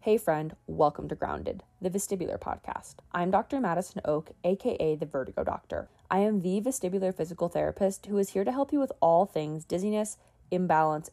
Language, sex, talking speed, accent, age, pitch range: English, female, 180 wpm, American, 20-39, 160-210 Hz